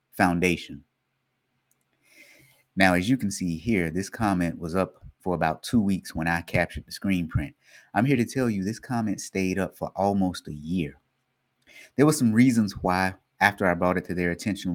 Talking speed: 185 wpm